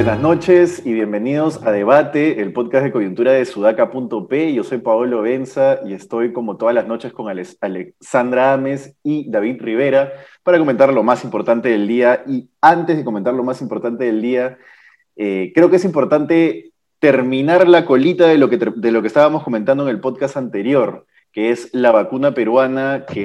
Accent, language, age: Argentinian, Spanish, 30-49